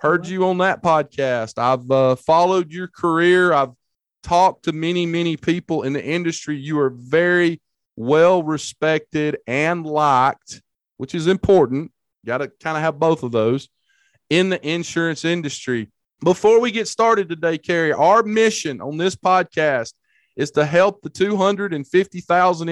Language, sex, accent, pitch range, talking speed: English, male, American, 135-175 Hz, 150 wpm